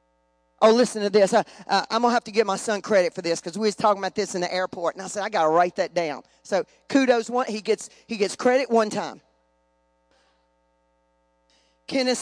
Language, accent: English, American